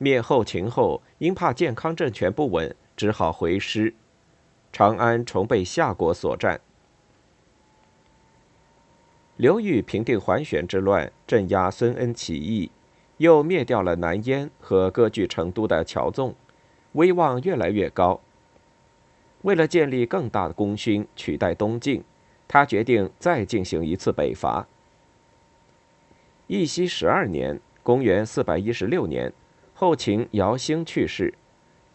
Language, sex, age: Chinese, male, 50-69